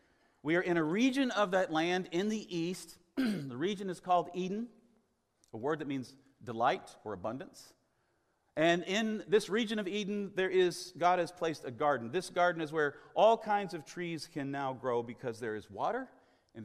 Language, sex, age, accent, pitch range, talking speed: English, male, 40-59, American, 135-180 Hz, 185 wpm